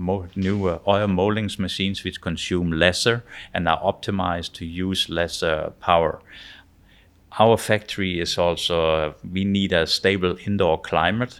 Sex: male